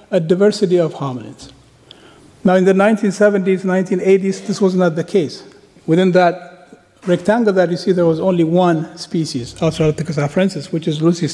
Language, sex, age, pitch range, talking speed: French, male, 50-69, 160-195 Hz, 160 wpm